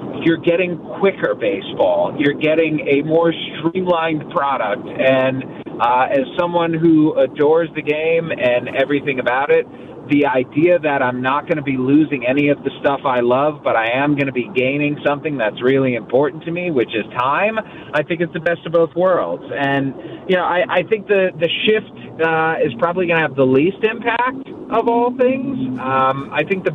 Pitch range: 135-170 Hz